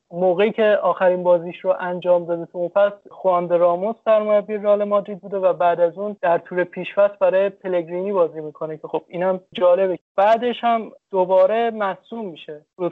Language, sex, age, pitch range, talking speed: Persian, male, 30-49, 175-205 Hz, 170 wpm